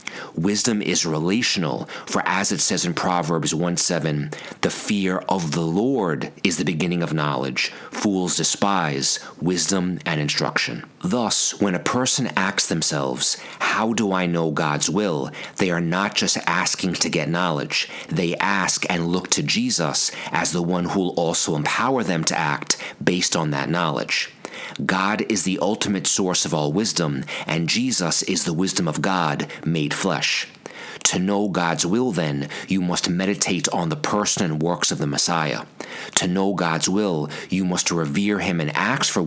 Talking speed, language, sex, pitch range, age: 170 wpm, English, male, 85-100 Hz, 40-59